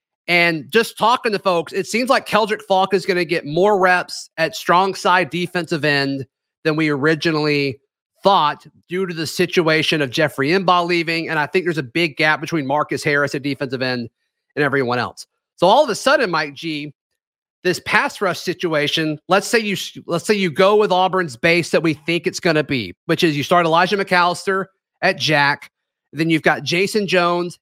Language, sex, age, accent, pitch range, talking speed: English, male, 30-49, American, 150-185 Hz, 190 wpm